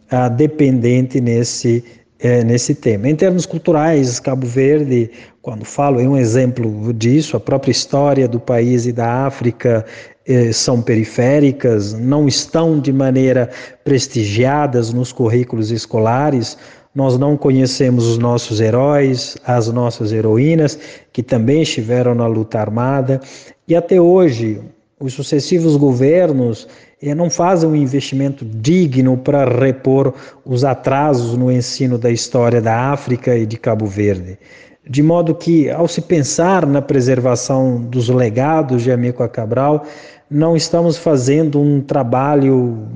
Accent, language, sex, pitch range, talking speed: Brazilian, Portuguese, male, 120-145 Hz, 135 wpm